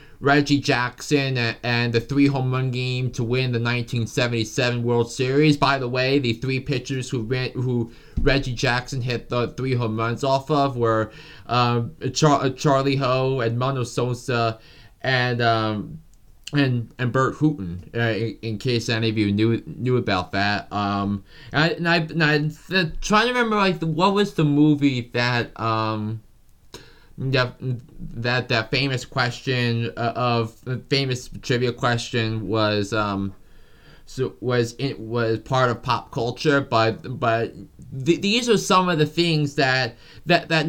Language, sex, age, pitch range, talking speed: English, male, 20-39, 120-145 Hz, 160 wpm